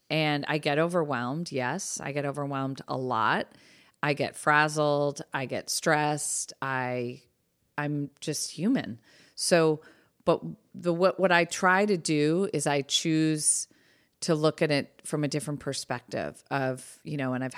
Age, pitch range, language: 30-49, 130-155 Hz, English